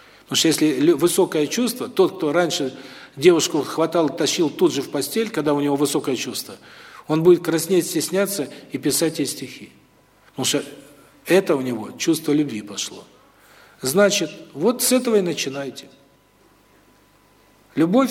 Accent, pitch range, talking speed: native, 150-195 Hz, 145 wpm